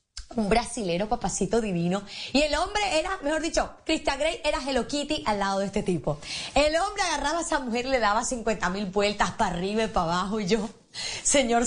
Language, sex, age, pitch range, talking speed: Spanish, female, 30-49, 200-305 Hz, 200 wpm